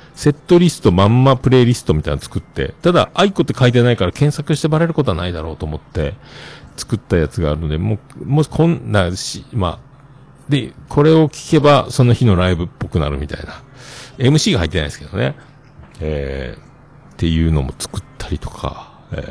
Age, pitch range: 50-69, 90-135 Hz